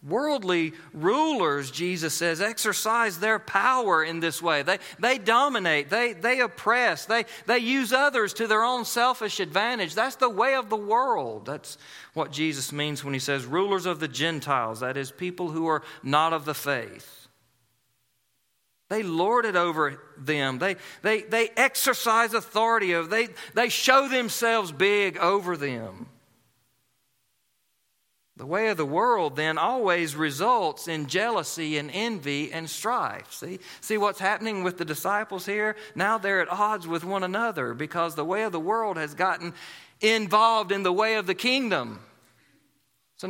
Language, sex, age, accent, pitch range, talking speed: English, male, 40-59, American, 150-230 Hz, 155 wpm